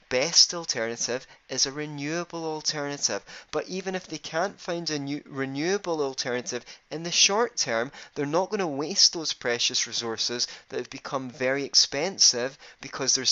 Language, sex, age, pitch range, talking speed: English, male, 20-39, 125-180 Hz, 155 wpm